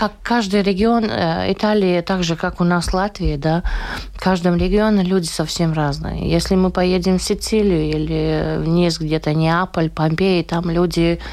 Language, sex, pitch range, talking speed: Russian, female, 160-190 Hz, 165 wpm